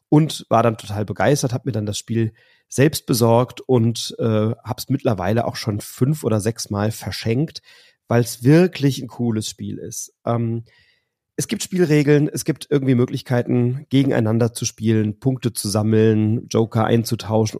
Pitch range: 110-130 Hz